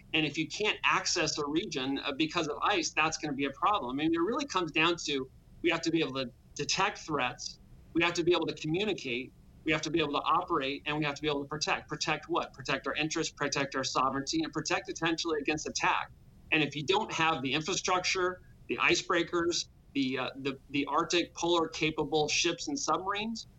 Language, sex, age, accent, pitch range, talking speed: English, male, 40-59, American, 140-170 Hz, 215 wpm